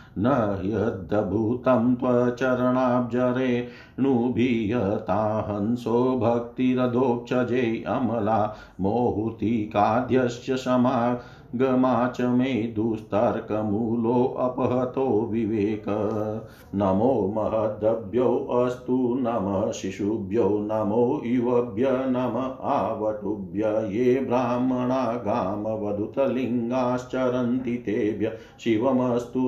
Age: 50-69